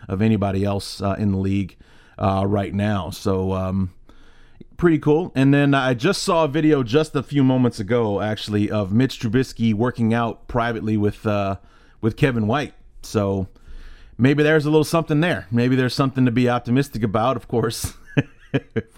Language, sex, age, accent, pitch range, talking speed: English, male, 30-49, American, 105-135 Hz, 175 wpm